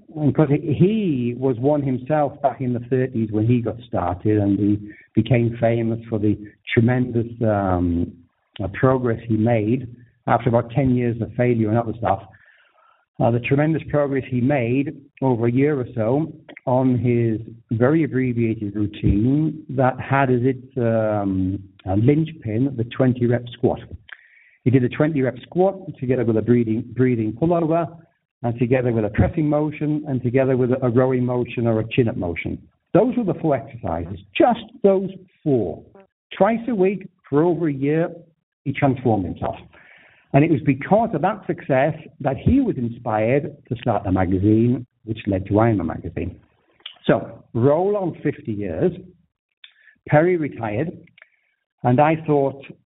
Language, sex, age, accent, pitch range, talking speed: English, male, 60-79, British, 115-150 Hz, 150 wpm